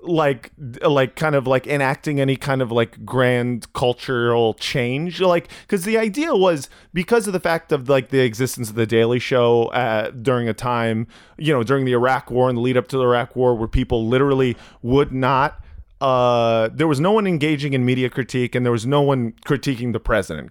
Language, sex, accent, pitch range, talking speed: English, male, American, 120-155 Hz, 205 wpm